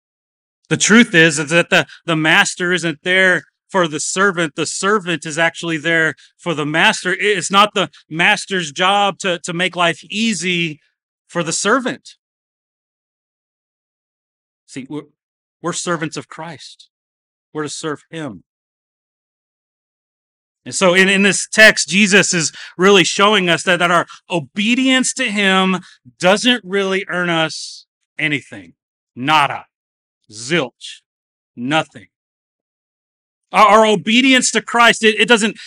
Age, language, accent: 30-49, English, American